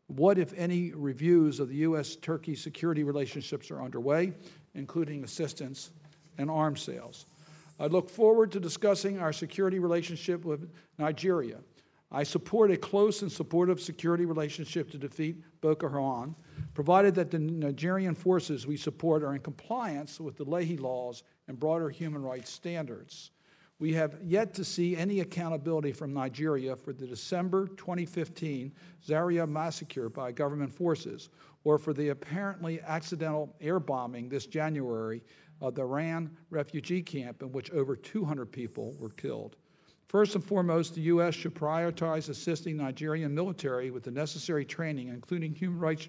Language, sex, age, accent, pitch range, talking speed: English, male, 60-79, American, 145-170 Hz, 145 wpm